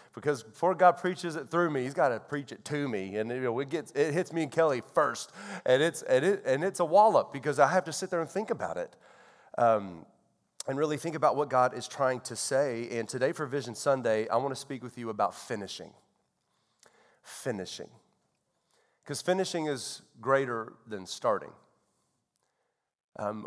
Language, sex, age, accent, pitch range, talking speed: English, male, 30-49, American, 125-165 Hz, 195 wpm